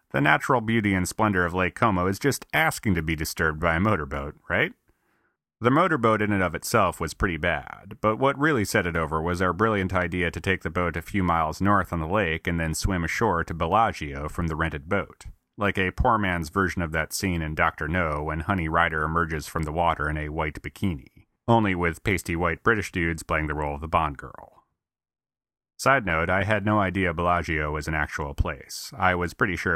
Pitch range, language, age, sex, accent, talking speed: 80-100 Hz, English, 30-49, male, American, 220 wpm